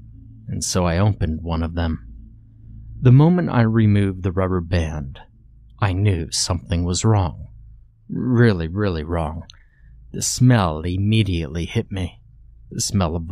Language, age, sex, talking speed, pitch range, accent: English, 30-49, male, 135 wpm, 90-115 Hz, American